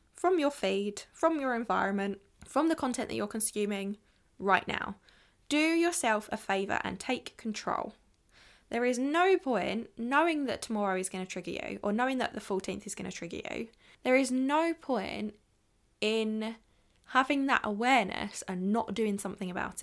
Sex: female